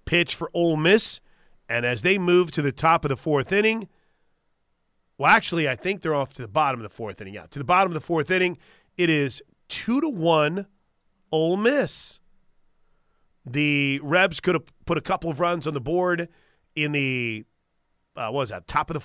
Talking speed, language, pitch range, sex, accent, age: 200 wpm, English, 140-175 Hz, male, American, 30-49